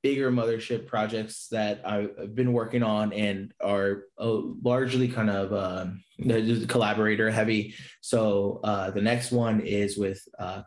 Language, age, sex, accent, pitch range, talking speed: English, 20-39, male, American, 100-120 Hz, 140 wpm